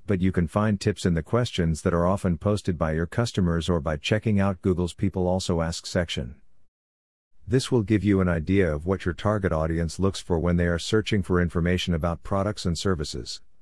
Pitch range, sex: 85-105 Hz, male